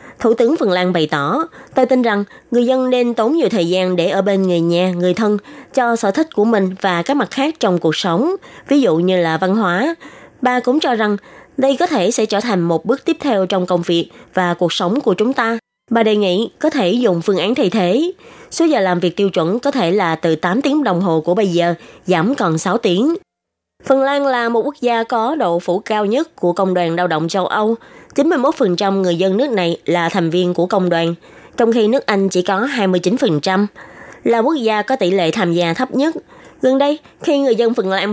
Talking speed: 235 wpm